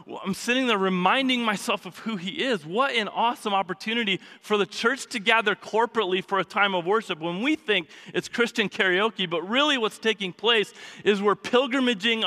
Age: 30-49